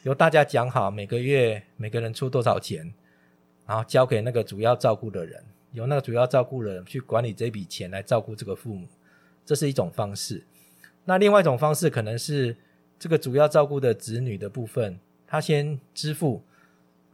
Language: Chinese